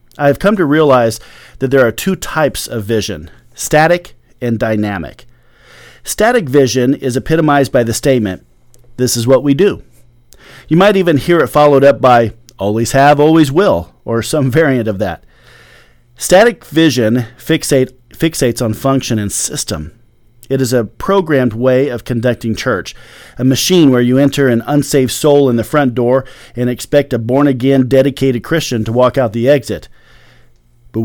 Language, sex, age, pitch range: English, male, 40-59, 115-145 Hz